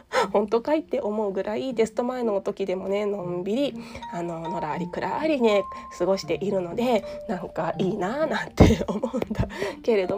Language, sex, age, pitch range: Japanese, female, 20-39, 180-245 Hz